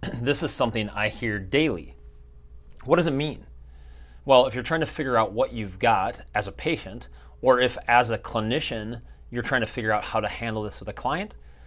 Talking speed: 205 wpm